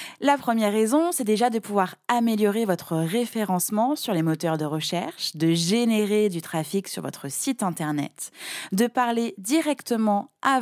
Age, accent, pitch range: 20-39, French, 170-225 Hz